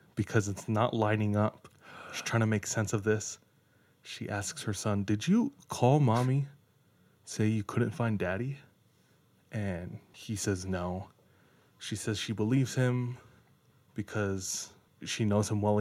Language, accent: English, American